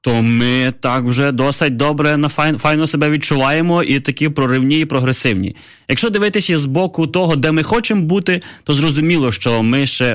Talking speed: 175 wpm